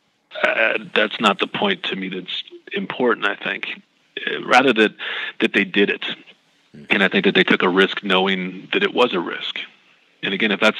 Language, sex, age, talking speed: English, male, 30-49, 200 wpm